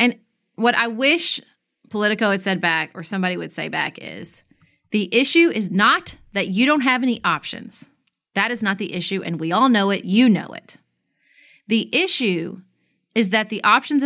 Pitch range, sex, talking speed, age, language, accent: 185-245 Hz, female, 185 wpm, 30-49, English, American